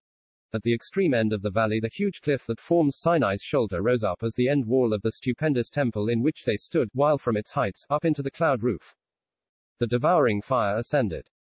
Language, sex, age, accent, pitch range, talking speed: English, male, 40-59, British, 110-135 Hz, 215 wpm